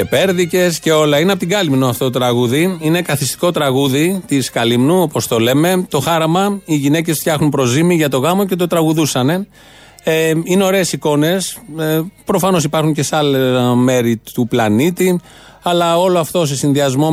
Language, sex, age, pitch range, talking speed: Greek, male, 30-49, 135-170 Hz, 170 wpm